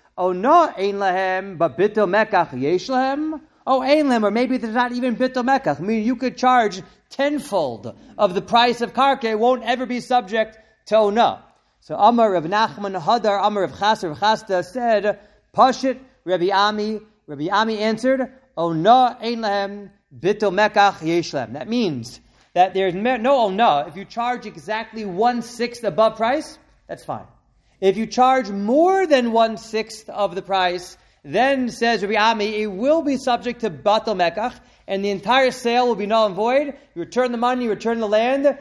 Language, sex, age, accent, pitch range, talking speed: English, male, 40-59, American, 195-245 Hz, 165 wpm